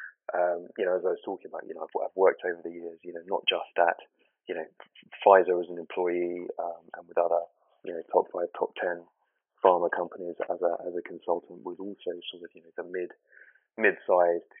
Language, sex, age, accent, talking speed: English, male, 20-39, British, 220 wpm